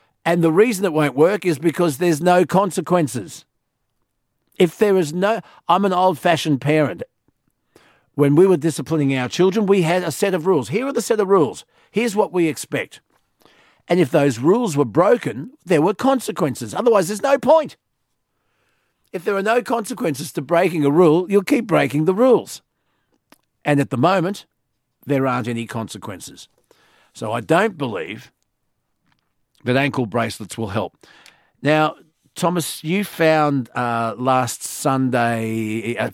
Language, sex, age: English, male, 50-69